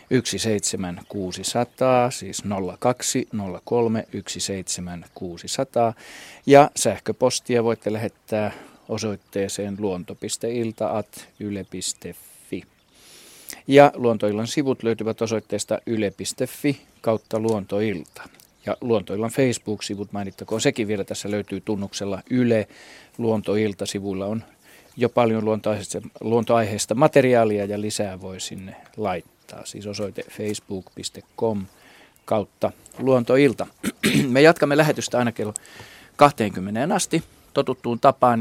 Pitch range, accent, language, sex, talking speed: 100-120 Hz, native, Finnish, male, 85 wpm